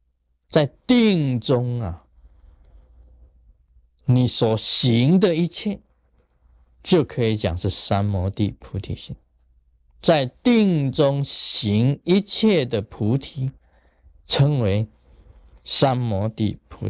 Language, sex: Chinese, male